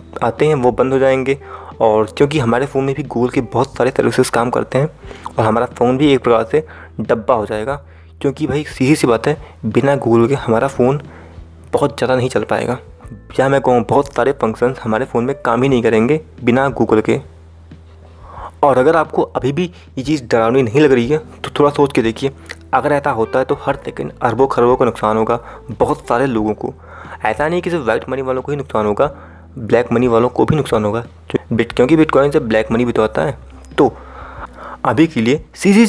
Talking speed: 210 wpm